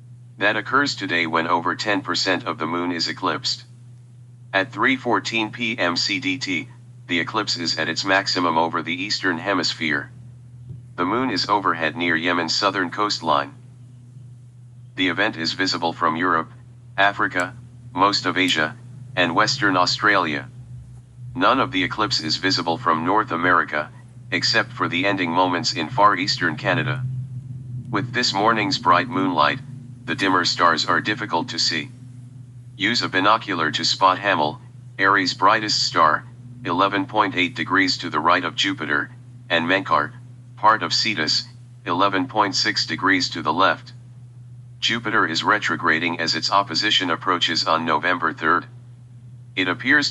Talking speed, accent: 135 wpm, American